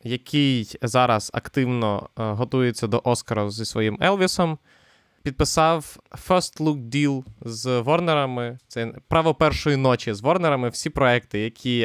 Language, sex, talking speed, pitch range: Ukrainian, male, 120 wpm, 110-135 Hz